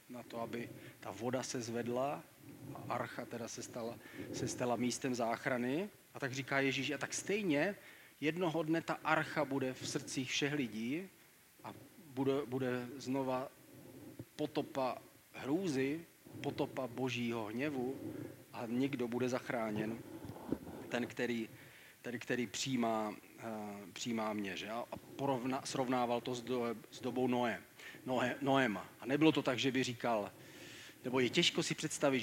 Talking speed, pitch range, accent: 140 wpm, 115-140 Hz, native